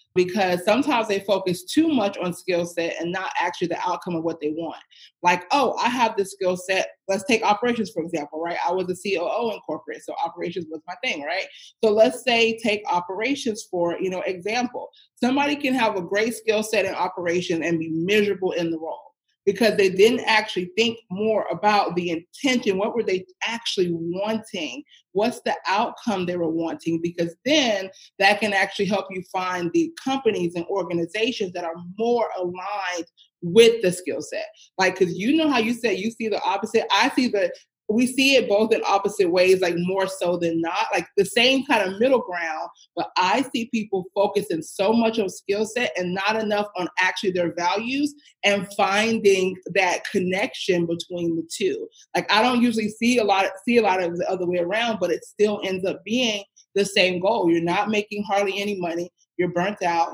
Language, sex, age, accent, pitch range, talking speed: English, female, 30-49, American, 180-220 Hz, 200 wpm